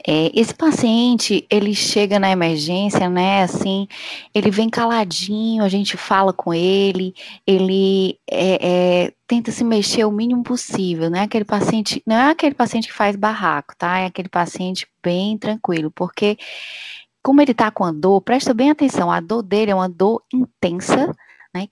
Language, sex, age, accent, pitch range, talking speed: Portuguese, female, 10-29, Brazilian, 185-235 Hz, 155 wpm